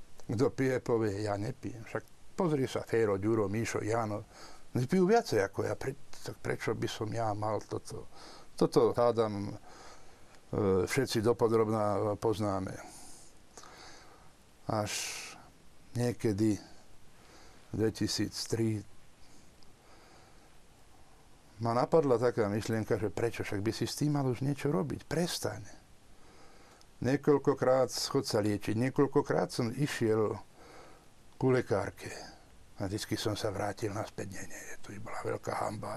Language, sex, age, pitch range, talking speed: Slovak, male, 60-79, 105-125 Hz, 115 wpm